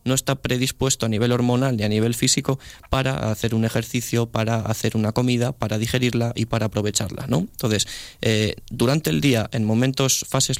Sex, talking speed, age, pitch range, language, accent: male, 180 wpm, 20-39, 110-130 Hz, Spanish, Spanish